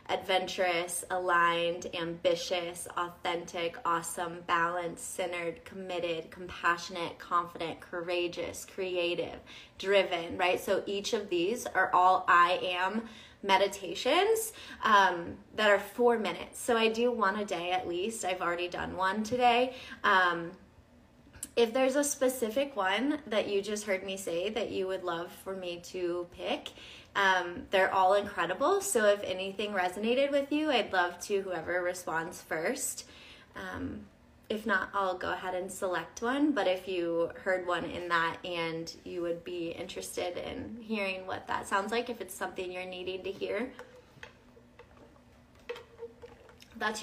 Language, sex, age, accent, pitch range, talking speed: English, female, 20-39, American, 175-235 Hz, 145 wpm